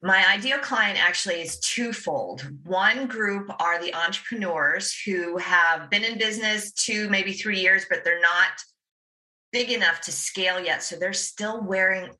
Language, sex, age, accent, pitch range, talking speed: English, female, 40-59, American, 170-215 Hz, 155 wpm